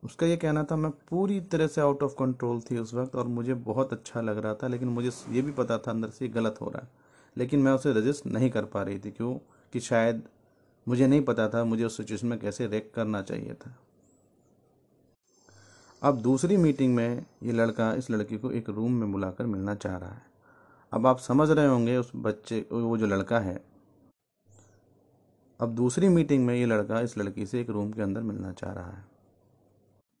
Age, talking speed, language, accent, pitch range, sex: 30-49, 205 wpm, Hindi, native, 105-135 Hz, male